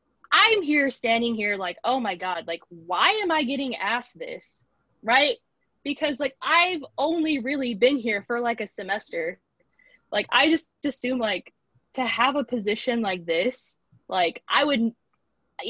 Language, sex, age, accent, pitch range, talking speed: English, female, 10-29, American, 190-280 Hz, 155 wpm